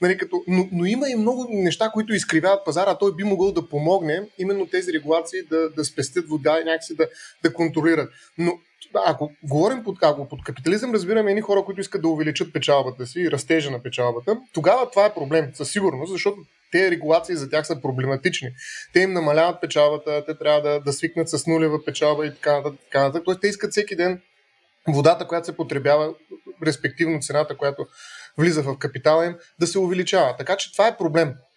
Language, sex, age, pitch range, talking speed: Bulgarian, male, 30-49, 155-205 Hz, 185 wpm